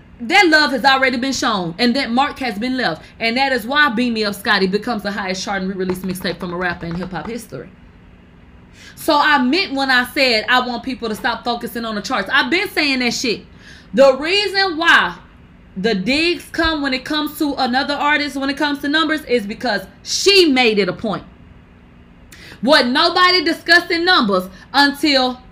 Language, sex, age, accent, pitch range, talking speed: English, female, 30-49, American, 210-310 Hz, 195 wpm